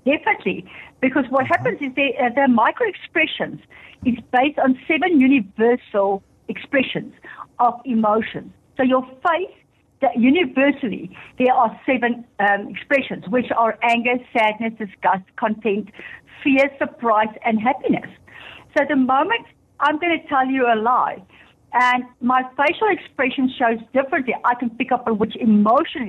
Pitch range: 225-285 Hz